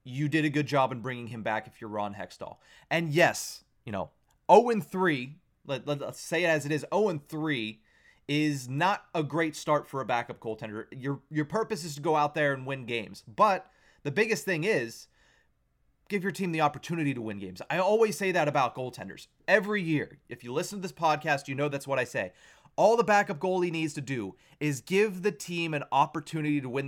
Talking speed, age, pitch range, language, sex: 210 wpm, 30-49, 135-185 Hz, English, male